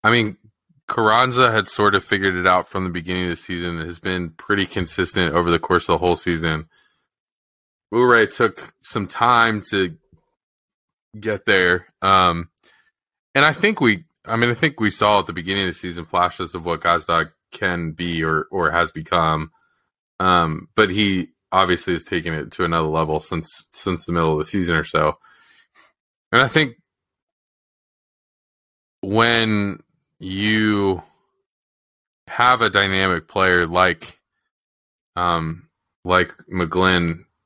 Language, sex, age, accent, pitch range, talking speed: English, male, 20-39, American, 85-100 Hz, 150 wpm